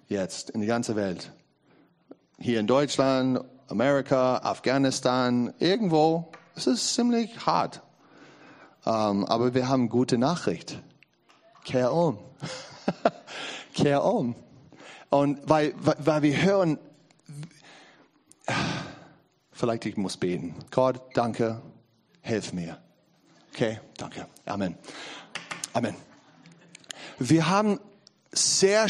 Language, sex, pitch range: German, male, 130-170 Hz